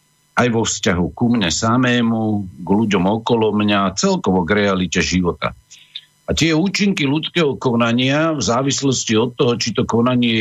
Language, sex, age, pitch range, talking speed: Slovak, male, 50-69, 100-140 Hz, 150 wpm